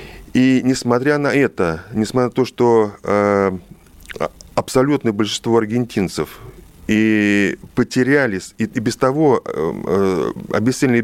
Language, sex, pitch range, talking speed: Russian, male, 95-120 Hz, 90 wpm